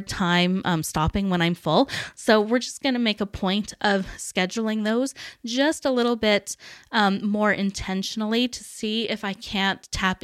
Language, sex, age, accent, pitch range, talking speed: English, female, 20-39, American, 195-255 Hz, 175 wpm